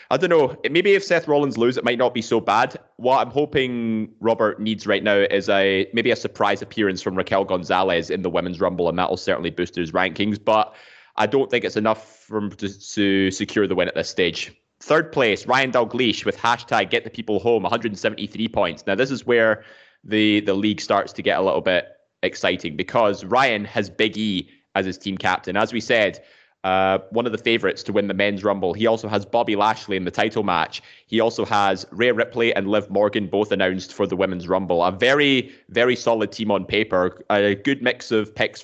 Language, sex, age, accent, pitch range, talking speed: English, male, 20-39, British, 95-115 Hz, 215 wpm